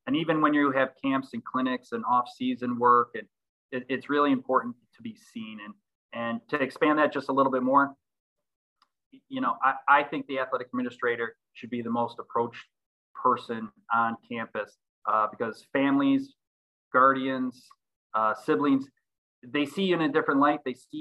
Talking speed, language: 170 wpm, English